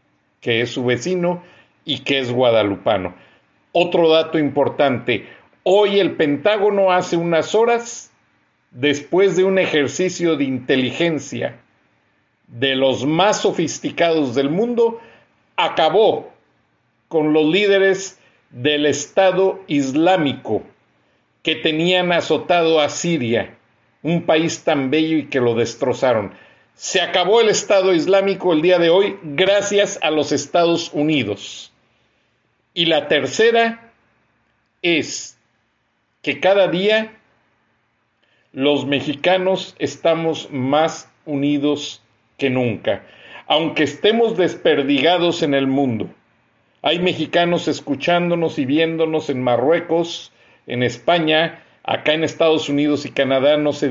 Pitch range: 135-180 Hz